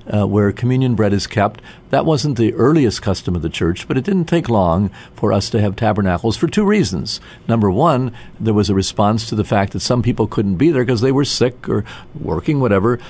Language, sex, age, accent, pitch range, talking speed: English, male, 50-69, American, 105-135 Hz, 225 wpm